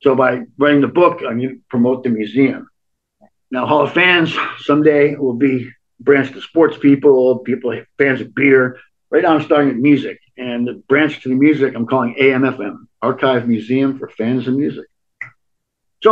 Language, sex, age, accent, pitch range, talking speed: English, male, 50-69, American, 115-140 Hz, 180 wpm